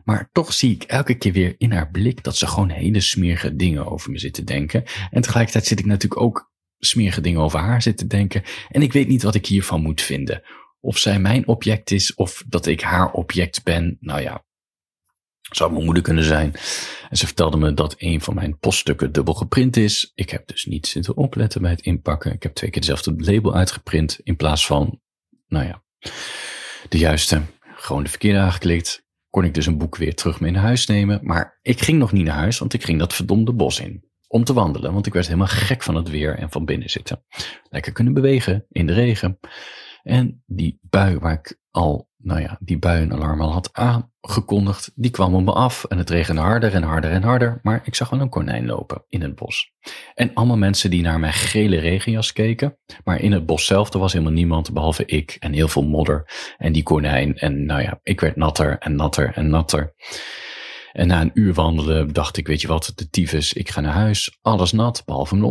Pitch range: 80-110 Hz